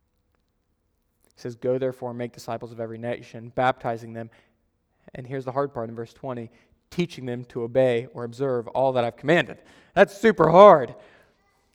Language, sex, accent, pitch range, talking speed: English, male, American, 125-195 Hz, 170 wpm